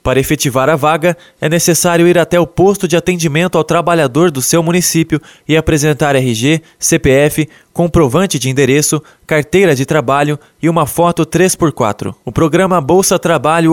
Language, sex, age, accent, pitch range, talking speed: Portuguese, male, 20-39, Brazilian, 150-175 Hz, 155 wpm